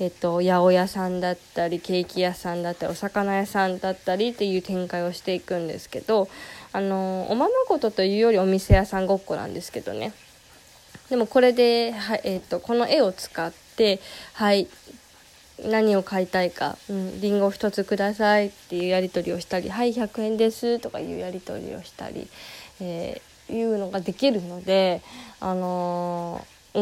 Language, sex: Japanese, female